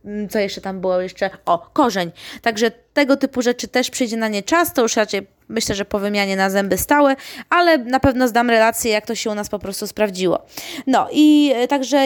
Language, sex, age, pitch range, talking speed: Polish, female, 20-39, 220-270 Hz, 210 wpm